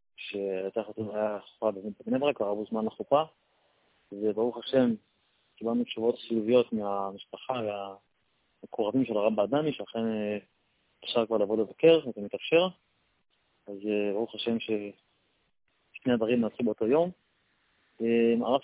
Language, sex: Hebrew, male